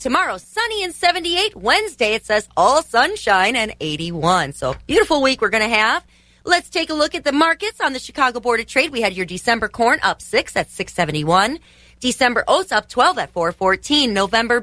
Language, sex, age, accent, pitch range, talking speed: English, female, 30-49, American, 190-300 Hz, 200 wpm